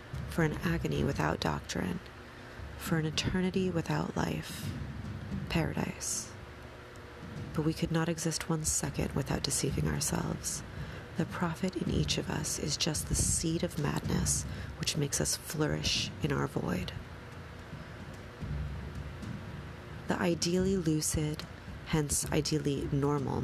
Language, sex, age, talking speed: English, female, 30-49, 120 wpm